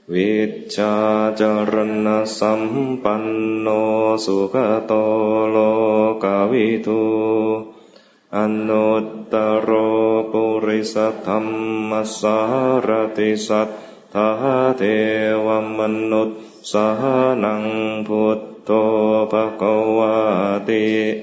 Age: 30-49